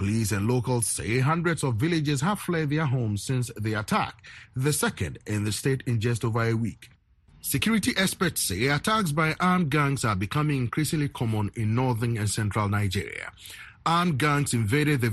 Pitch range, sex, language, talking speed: 115-160 Hz, male, English, 175 wpm